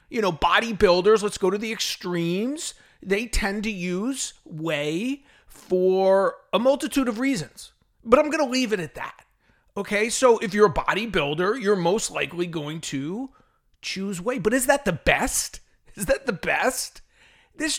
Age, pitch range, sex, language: 30-49, 190-250 Hz, male, English